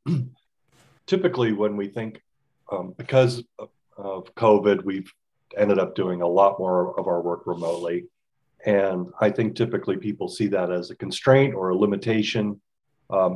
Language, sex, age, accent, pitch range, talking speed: English, male, 40-59, American, 95-120 Hz, 150 wpm